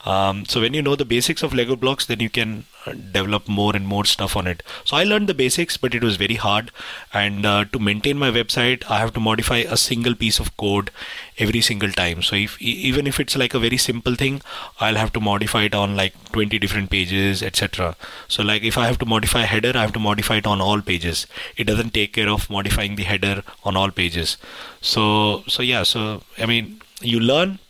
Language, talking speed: English, 230 wpm